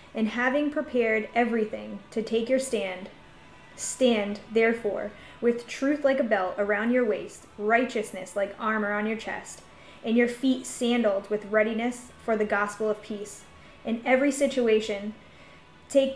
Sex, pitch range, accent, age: female, 210-250 Hz, American, 10-29